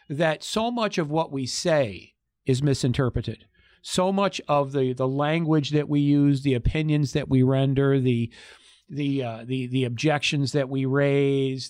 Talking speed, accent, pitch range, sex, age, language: 165 wpm, American, 135-180 Hz, male, 50-69, English